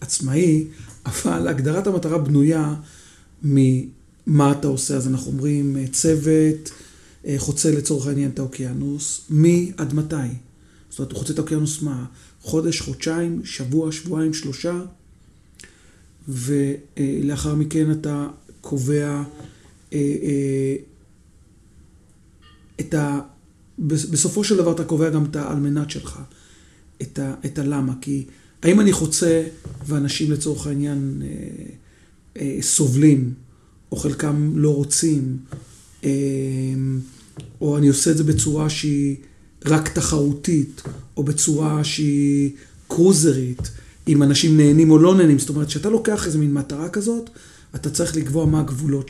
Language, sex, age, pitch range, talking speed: Hebrew, male, 40-59, 135-155 Hz, 120 wpm